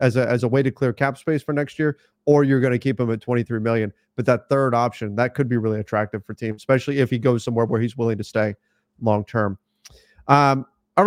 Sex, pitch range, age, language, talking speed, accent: male, 120-140 Hz, 30-49, English, 250 wpm, American